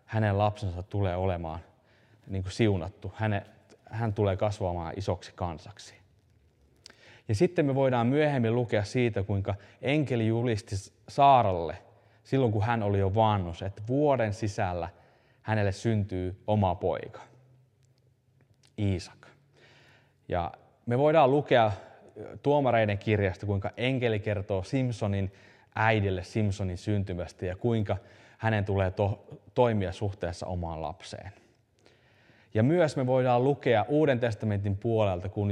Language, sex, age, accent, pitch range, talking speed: Finnish, male, 20-39, native, 95-120 Hz, 115 wpm